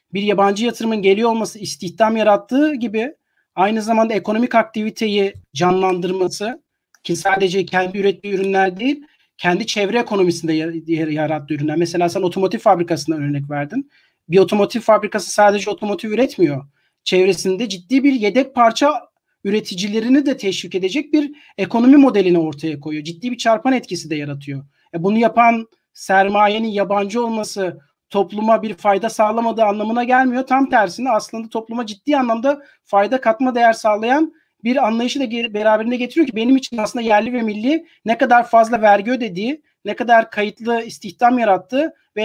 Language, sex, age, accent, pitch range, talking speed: Turkish, male, 40-59, native, 190-235 Hz, 145 wpm